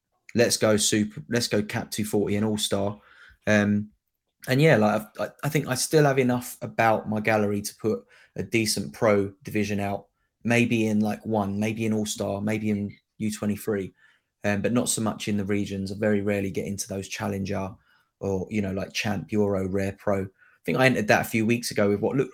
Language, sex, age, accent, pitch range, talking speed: English, male, 20-39, British, 100-110 Hz, 200 wpm